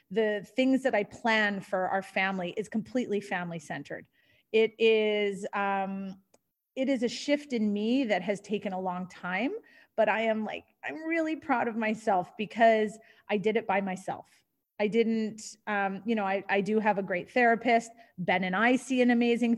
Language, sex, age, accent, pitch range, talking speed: English, female, 30-49, American, 195-240 Hz, 185 wpm